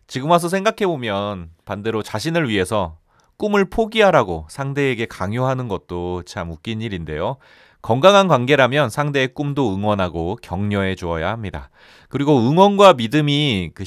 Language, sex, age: Korean, male, 30-49